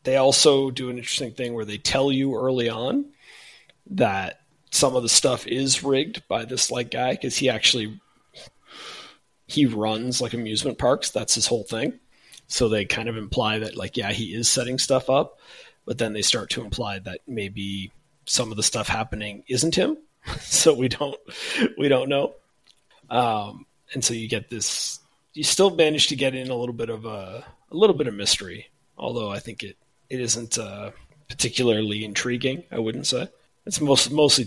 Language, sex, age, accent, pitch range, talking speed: English, male, 30-49, American, 110-135 Hz, 185 wpm